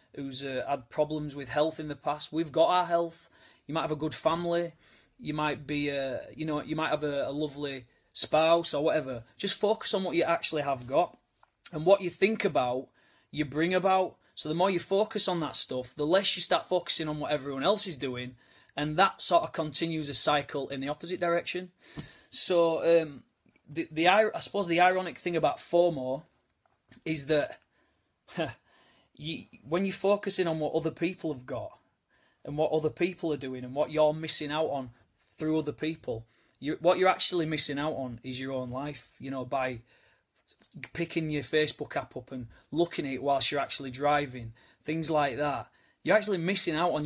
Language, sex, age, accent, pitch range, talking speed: English, male, 30-49, British, 140-170 Hz, 195 wpm